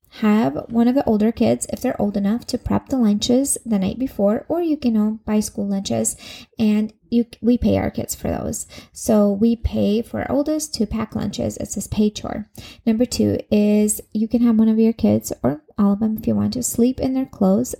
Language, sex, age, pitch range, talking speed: English, female, 20-39, 205-240 Hz, 220 wpm